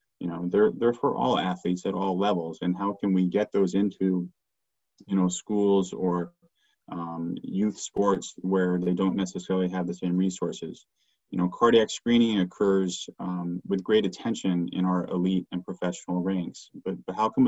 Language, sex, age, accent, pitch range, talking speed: English, male, 30-49, American, 90-100 Hz, 175 wpm